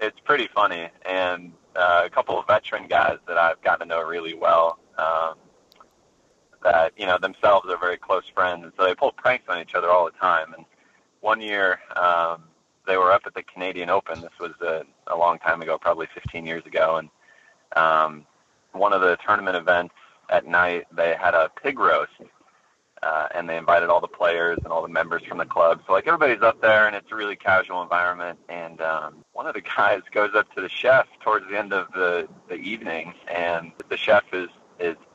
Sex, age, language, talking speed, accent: male, 30-49, English, 205 wpm, American